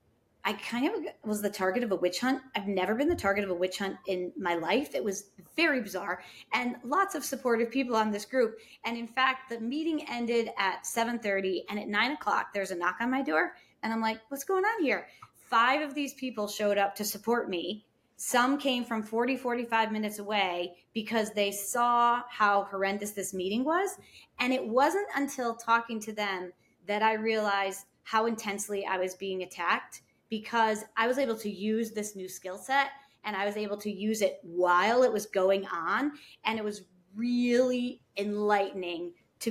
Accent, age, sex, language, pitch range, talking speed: American, 30-49, female, English, 195-245 Hz, 195 wpm